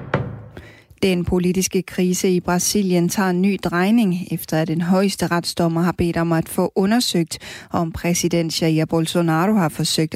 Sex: female